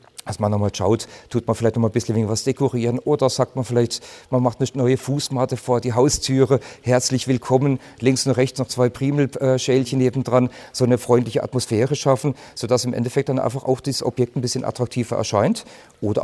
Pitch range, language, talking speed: 115-130 Hz, German, 200 wpm